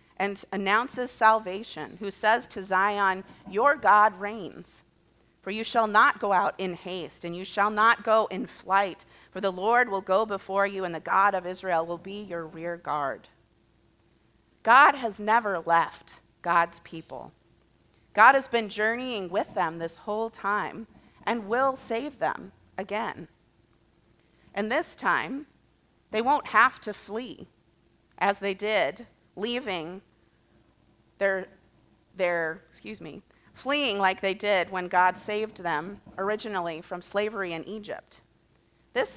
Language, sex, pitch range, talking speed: English, female, 185-225 Hz, 140 wpm